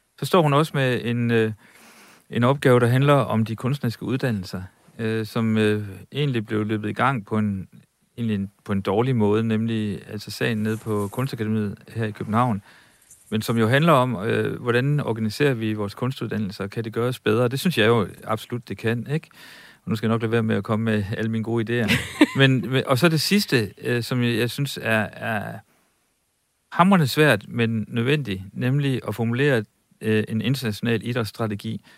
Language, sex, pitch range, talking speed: Danish, male, 110-125 Hz, 190 wpm